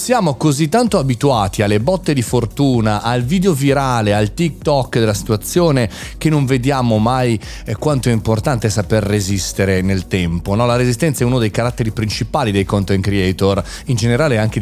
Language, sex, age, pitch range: Italian, male, 30-49, 100-135 Hz